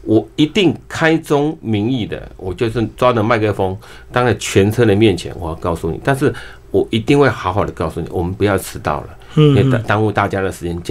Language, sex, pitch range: Chinese, male, 100-145 Hz